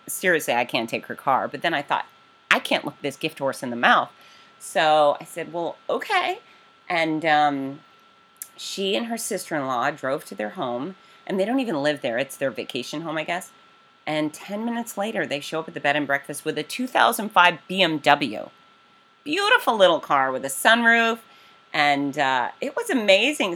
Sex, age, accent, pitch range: female, 30-49, American, 145-200 Hz